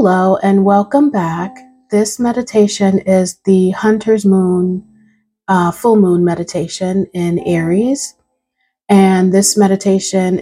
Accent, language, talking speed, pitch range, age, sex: American, English, 110 wpm, 170-200 Hz, 30-49, female